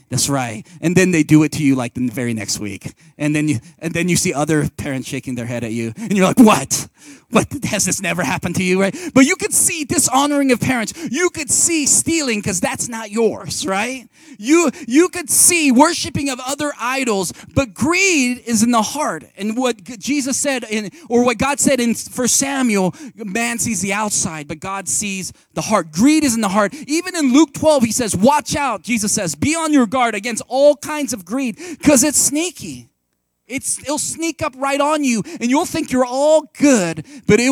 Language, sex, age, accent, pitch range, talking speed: English, male, 30-49, American, 175-275 Hz, 210 wpm